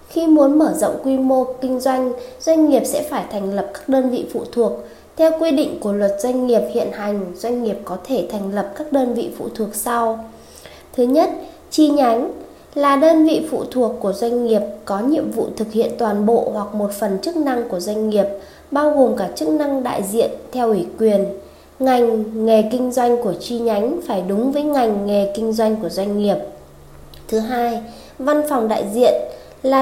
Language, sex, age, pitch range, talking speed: Vietnamese, female, 20-39, 210-270 Hz, 205 wpm